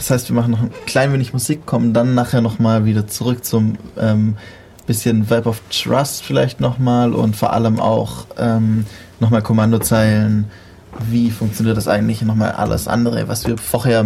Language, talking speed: German, 175 wpm